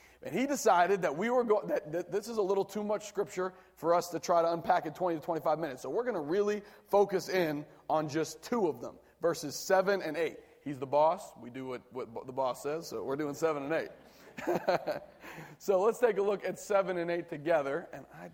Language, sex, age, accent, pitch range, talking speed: English, male, 30-49, American, 145-190 Hz, 230 wpm